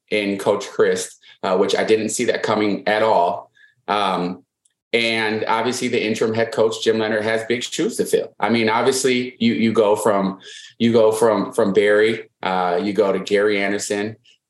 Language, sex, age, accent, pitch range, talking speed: English, male, 30-49, American, 105-145 Hz, 180 wpm